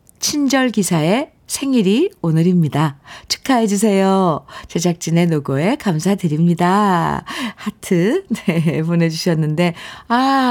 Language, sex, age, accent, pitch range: Korean, female, 50-69, native, 160-220 Hz